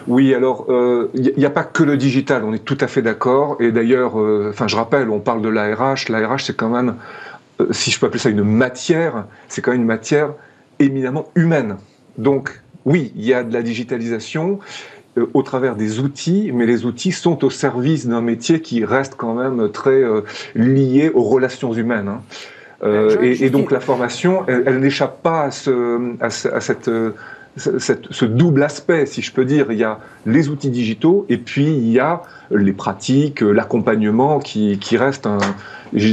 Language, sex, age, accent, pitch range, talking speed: French, male, 40-59, French, 115-145 Hz, 200 wpm